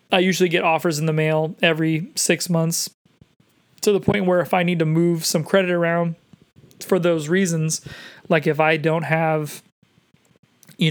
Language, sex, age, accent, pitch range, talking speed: English, male, 30-49, American, 155-175 Hz, 170 wpm